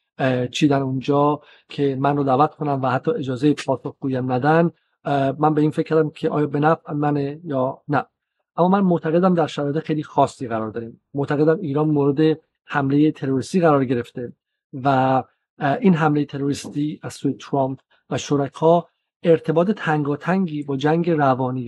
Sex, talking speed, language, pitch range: male, 145 wpm, Persian, 135-165 Hz